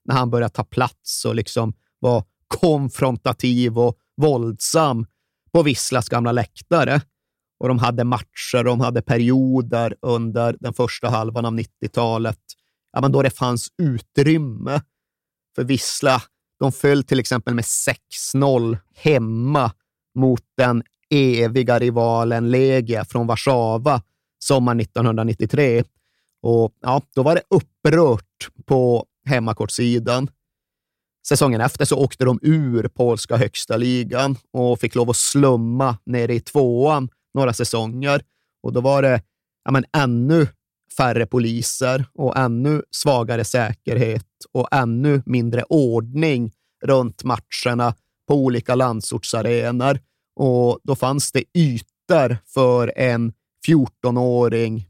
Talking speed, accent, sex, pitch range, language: 120 wpm, native, male, 115-135 Hz, Swedish